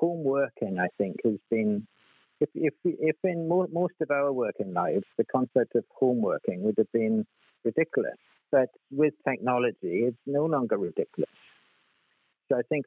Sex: male